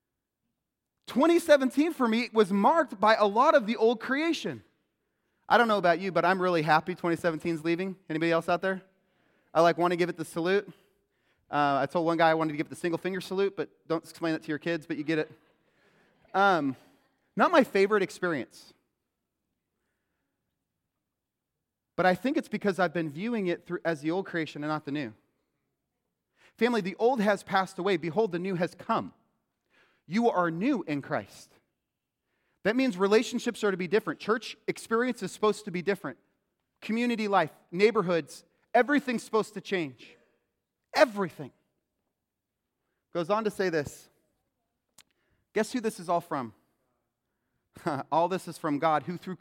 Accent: American